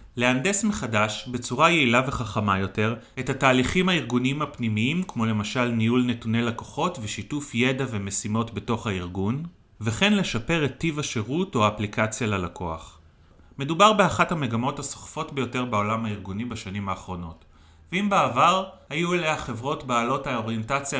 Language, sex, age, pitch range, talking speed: Hebrew, male, 30-49, 110-150 Hz, 125 wpm